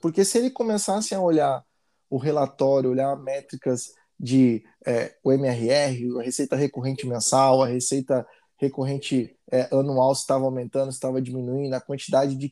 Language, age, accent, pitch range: Portuguese, 20-39, Brazilian, 130-155 Hz